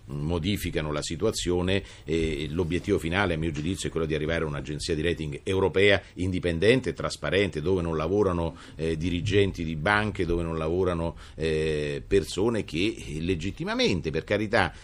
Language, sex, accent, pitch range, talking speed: Italian, male, native, 80-95 Hz, 145 wpm